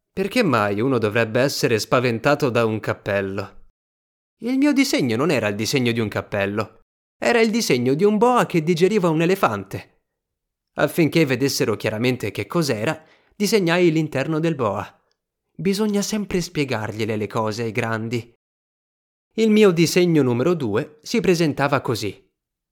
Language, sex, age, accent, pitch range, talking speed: Italian, male, 30-49, native, 115-175 Hz, 140 wpm